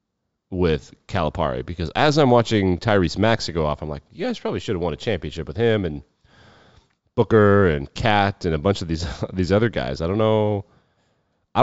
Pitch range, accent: 90-115 Hz, American